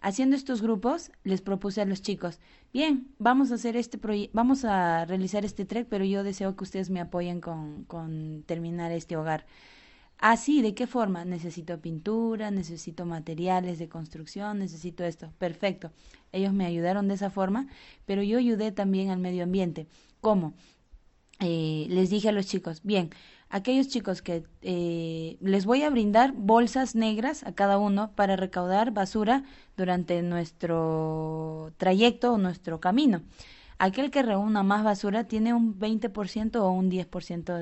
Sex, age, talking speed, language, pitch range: female, 20-39, 160 wpm, English, 170-210 Hz